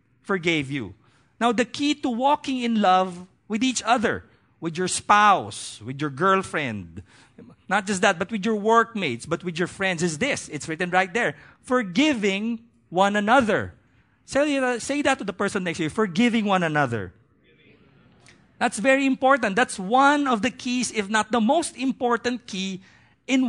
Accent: Filipino